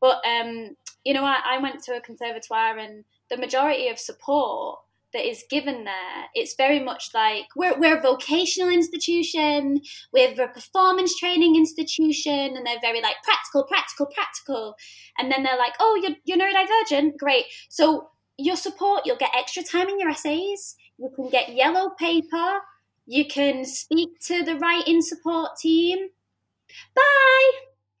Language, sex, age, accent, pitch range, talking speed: English, female, 20-39, British, 270-360 Hz, 160 wpm